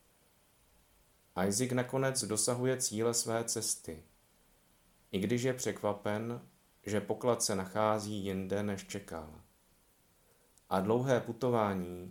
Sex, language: male, Czech